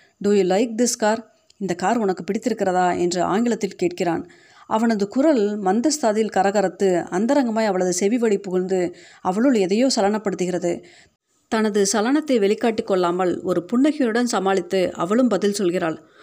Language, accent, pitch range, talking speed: Tamil, native, 185-230 Hz, 120 wpm